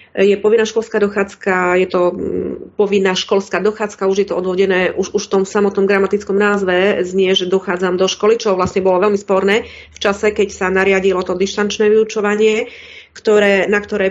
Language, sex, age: Czech, female, 30-49